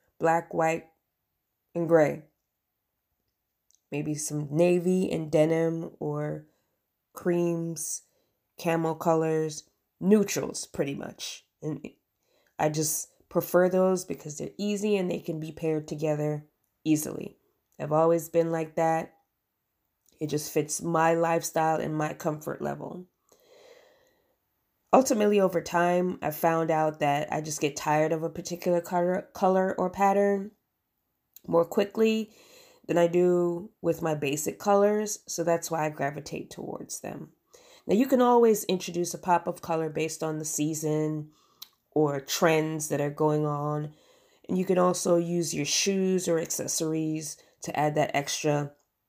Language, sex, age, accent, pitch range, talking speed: English, female, 20-39, American, 150-180 Hz, 135 wpm